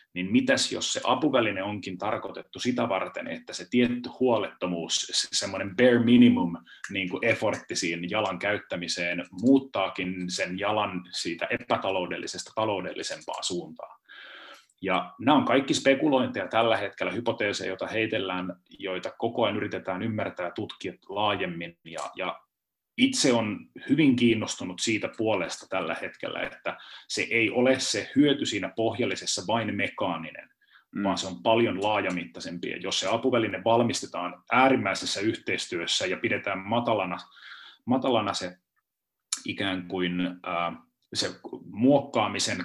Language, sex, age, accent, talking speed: Finnish, male, 30-49, native, 120 wpm